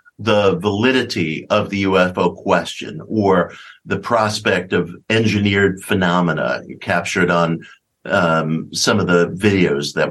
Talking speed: 120 wpm